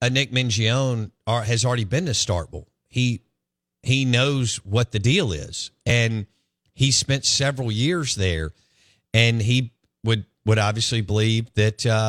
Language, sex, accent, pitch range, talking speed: English, male, American, 100-125 Hz, 140 wpm